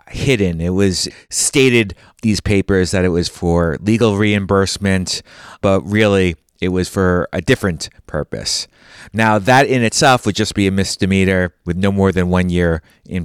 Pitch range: 90-110 Hz